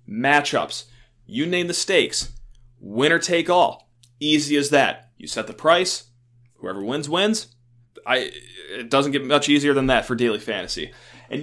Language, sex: English, male